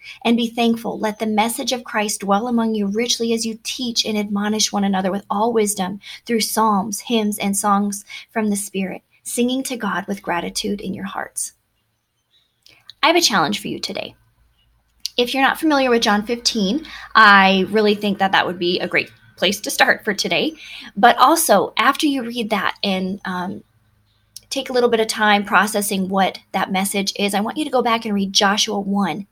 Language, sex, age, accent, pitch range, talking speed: English, female, 20-39, American, 195-240 Hz, 190 wpm